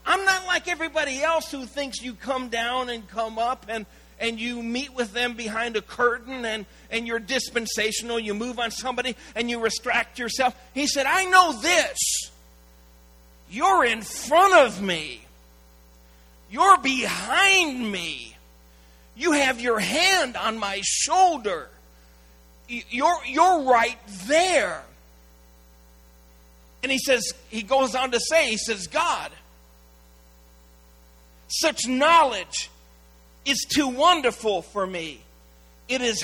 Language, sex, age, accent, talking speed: English, male, 40-59, American, 130 wpm